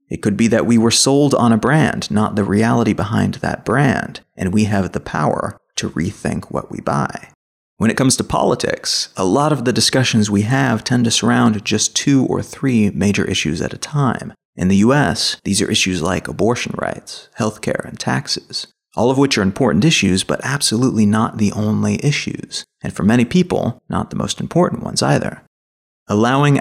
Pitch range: 100-125 Hz